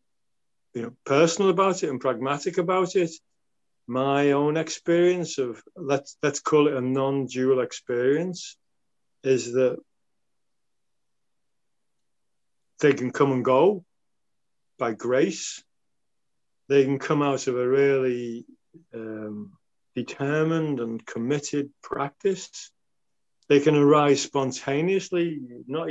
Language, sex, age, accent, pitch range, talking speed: English, male, 40-59, British, 125-165 Hz, 105 wpm